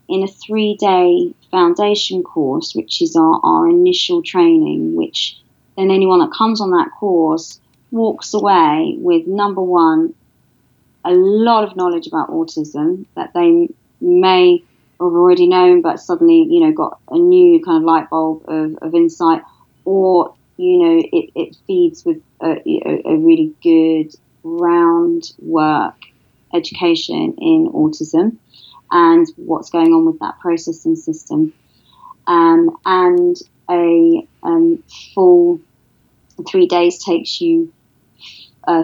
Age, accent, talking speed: 30-49, British, 130 wpm